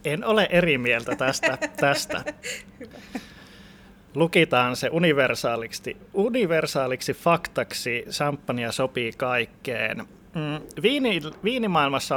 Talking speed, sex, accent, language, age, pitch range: 80 wpm, male, native, Finnish, 20-39, 120-150 Hz